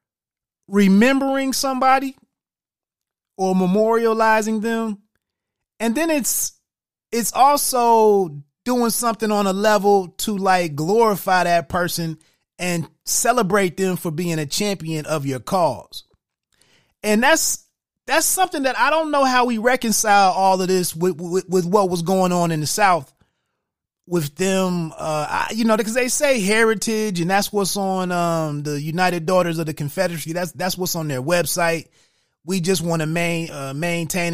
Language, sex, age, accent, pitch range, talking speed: English, male, 30-49, American, 170-235 Hz, 150 wpm